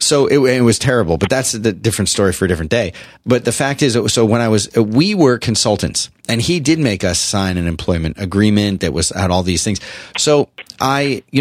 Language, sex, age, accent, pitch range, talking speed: English, male, 30-49, American, 85-115 Hz, 235 wpm